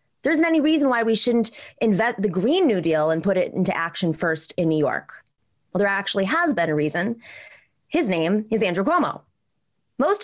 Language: English